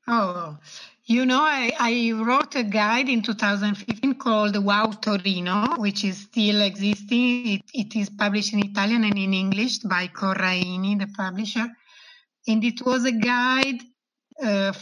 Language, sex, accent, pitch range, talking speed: English, female, Italian, 195-240 Hz, 145 wpm